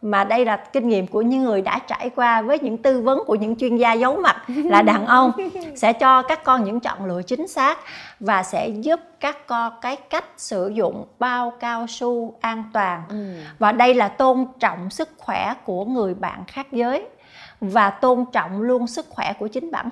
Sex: female